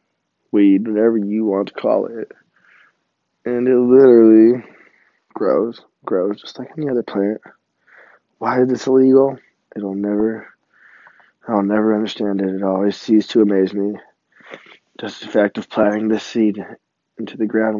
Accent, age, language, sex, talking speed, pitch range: American, 20-39, English, male, 145 wpm, 105-130 Hz